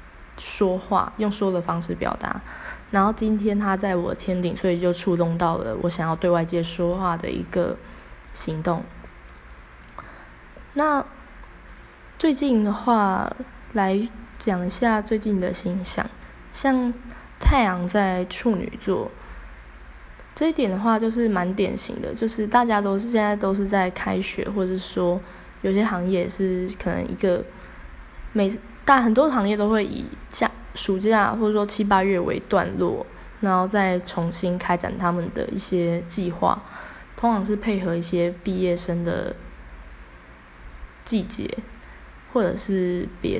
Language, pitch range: Chinese, 175-210 Hz